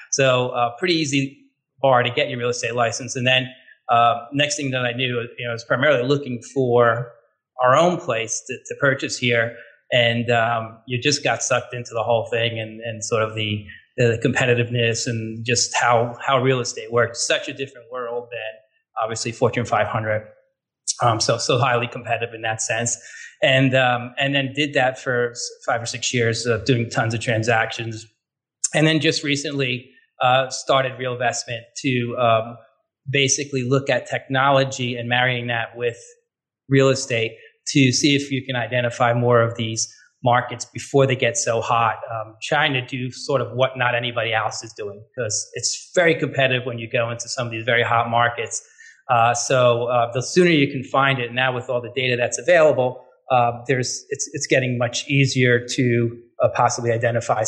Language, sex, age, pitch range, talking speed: English, male, 30-49, 115-135 Hz, 185 wpm